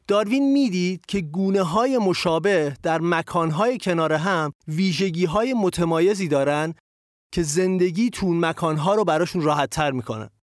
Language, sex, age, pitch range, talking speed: Persian, male, 30-49, 150-190 Hz, 115 wpm